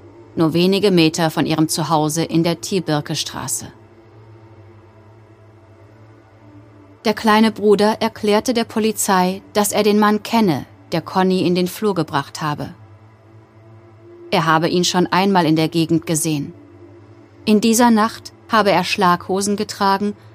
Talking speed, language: 125 wpm, German